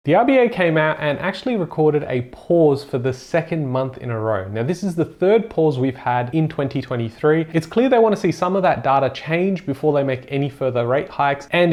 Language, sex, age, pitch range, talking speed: English, male, 20-39, 125-160 Hz, 225 wpm